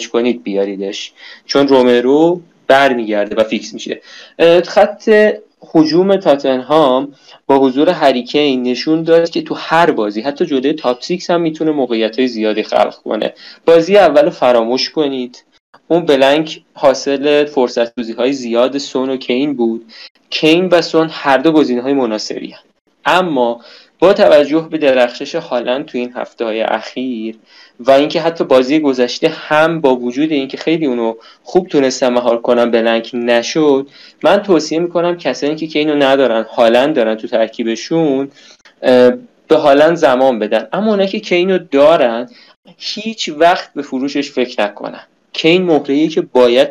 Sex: male